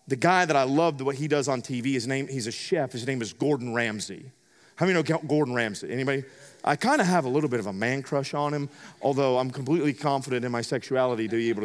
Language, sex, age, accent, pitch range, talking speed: English, male, 40-59, American, 140-235 Hz, 265 wpm